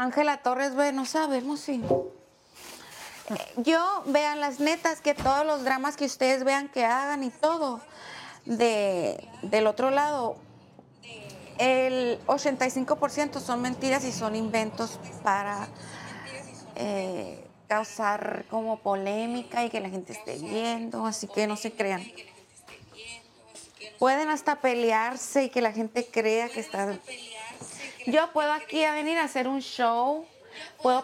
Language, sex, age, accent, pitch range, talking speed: English, female, 30-49, Mexican, 225-280 Hz, 130 wpm